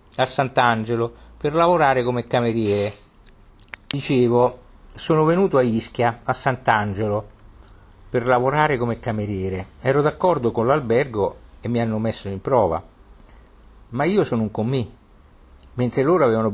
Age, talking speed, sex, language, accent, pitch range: 50-69, 125 wpm, male, Italian, native, 100-130 Hz